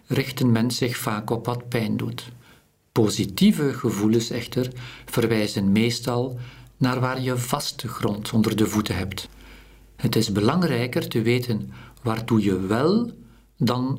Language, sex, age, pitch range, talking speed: Dutch, male, 50-69, 105-125 Hz, 135 wpm